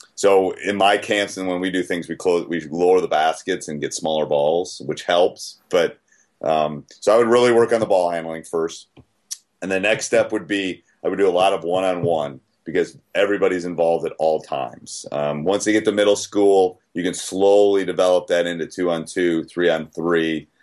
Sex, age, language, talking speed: male, 30-49, English, 205 wpm